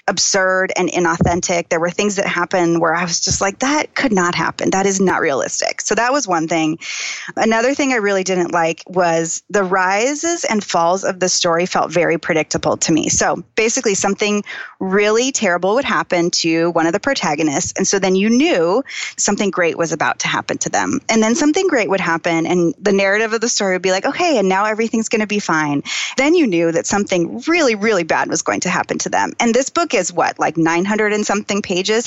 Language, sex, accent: English, female, American